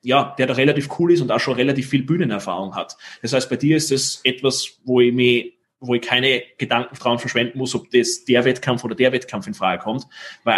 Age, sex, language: 20-39, male, German